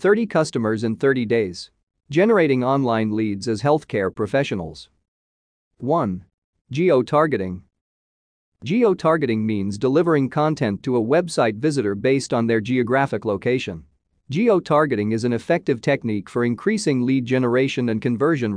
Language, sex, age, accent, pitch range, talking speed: English, male, 40-59, American, 100-150 Hz, 120 wpm